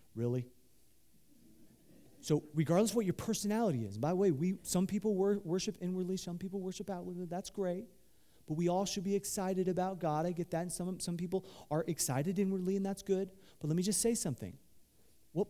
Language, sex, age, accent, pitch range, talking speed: English, male, 30-49, American, 180-270 Hz, 200 wpm